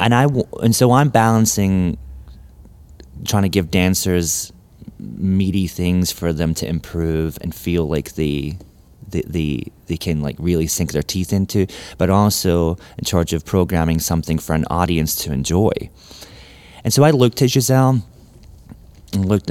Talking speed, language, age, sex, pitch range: 155 wpm, English, 30-49, male, 85-105 Hz